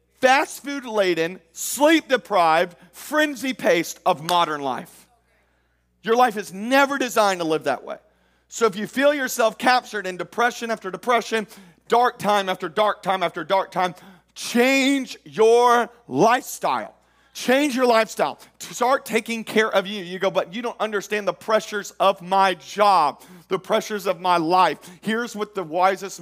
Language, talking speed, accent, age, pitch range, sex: English, 155 wpm, American, 40-59, 180-235 Hz, male